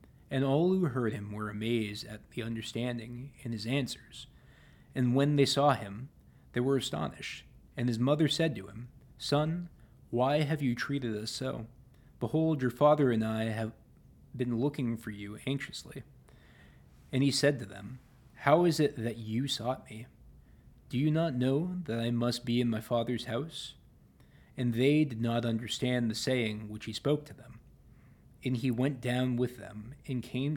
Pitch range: 110-135 Hz